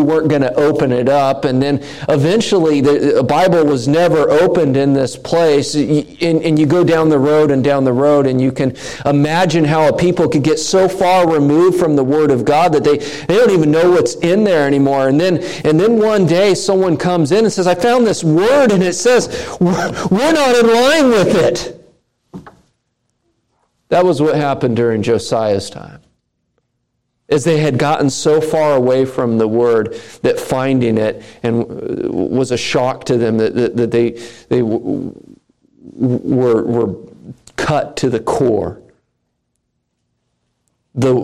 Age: 40-59